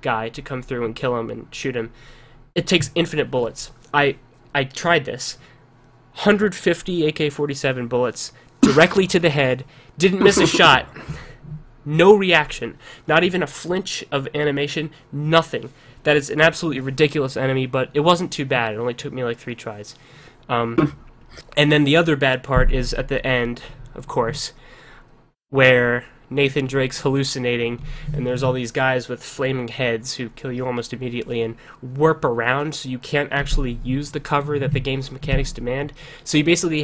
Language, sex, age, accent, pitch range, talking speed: English, male, 20-39, American, 125-150 Hz, 170 wpm